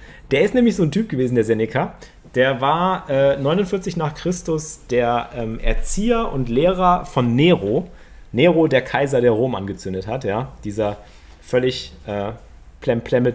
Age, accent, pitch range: 30-49, German, 110-145 Hz